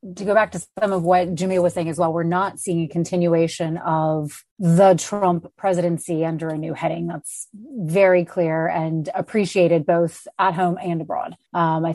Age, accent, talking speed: 30-49, American, 185 wpm